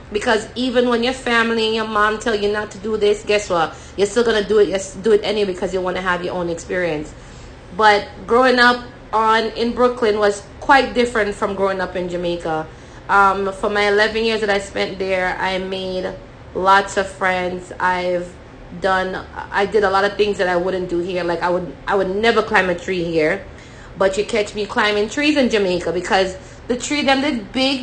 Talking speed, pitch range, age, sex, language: 210 wpm, 190-235 Hz, 20-39, female, English